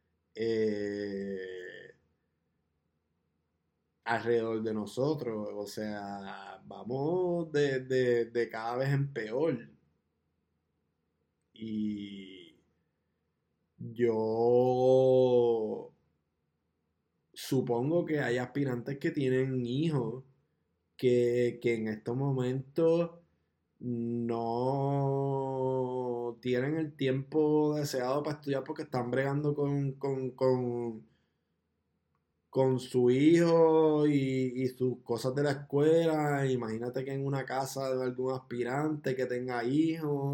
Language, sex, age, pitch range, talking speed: Spanish, male, 20-39, 110-135 Hz, 90 wpm